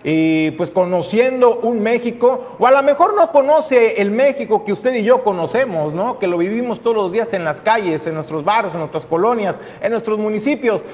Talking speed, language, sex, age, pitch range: 205 wpm, Spanish, male, 40-59, 190-245 Hz